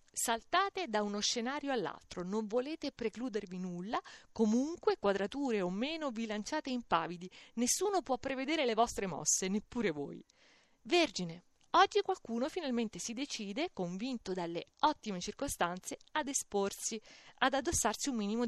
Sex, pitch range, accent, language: female, 195-280 Hz, native, Italian